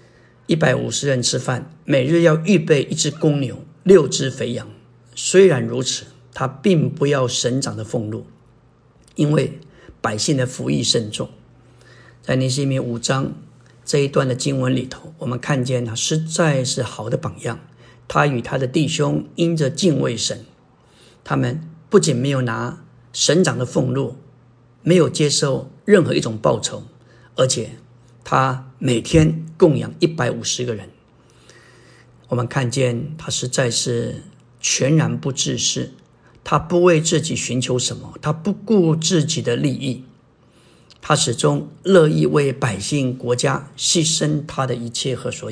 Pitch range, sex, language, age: 120-155 Hz, male, Chinese, 50-69